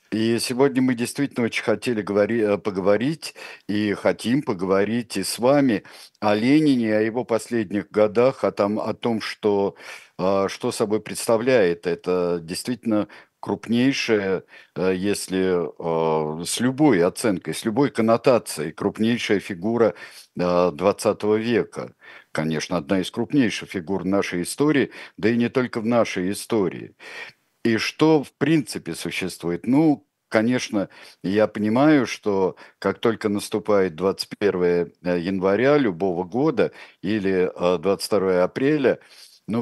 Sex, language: male, Russian